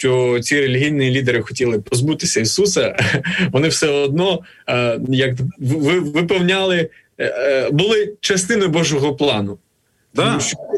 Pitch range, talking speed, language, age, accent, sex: 125-160 Hz, 100 wpm, Ukrainian, 20-39, native, male